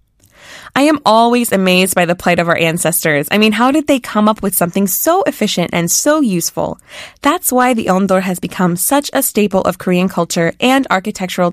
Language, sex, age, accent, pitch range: Korean, female, 20-39, American, 180-250 Hz